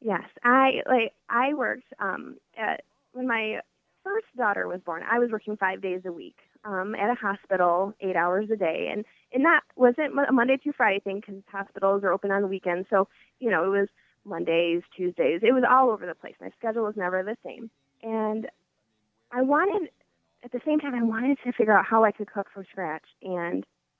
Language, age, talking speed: English, 20-39, 205 wpm